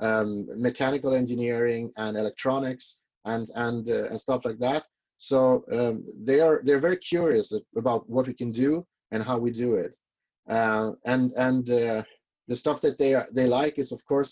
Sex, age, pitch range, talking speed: male, 30-49, 115-145 Hz, 180 wpm